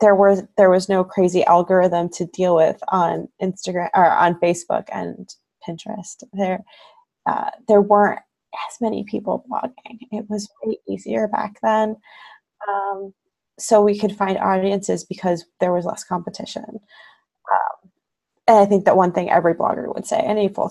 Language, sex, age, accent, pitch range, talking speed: English, female, 20-39, American, 180-215 Hz, 160 wpm